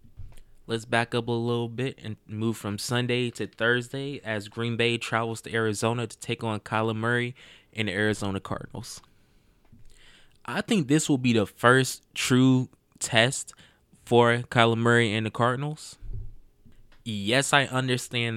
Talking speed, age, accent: 145 wpm, 20-39, American